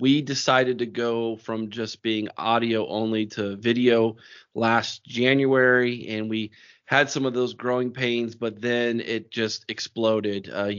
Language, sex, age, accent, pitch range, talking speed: English, male, 30-49, American, 110-125 Hz, 150 wpm